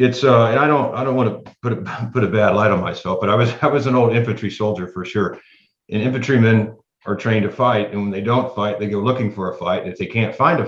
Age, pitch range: 50-69, 95-120 Hz